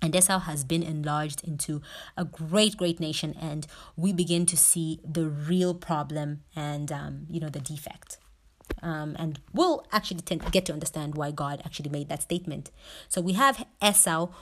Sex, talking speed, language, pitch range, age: female, 180 wpm, English, 155-190 Hz, 30-49